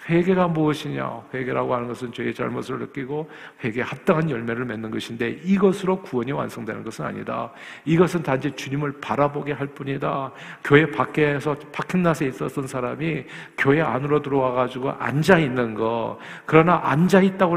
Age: 50-69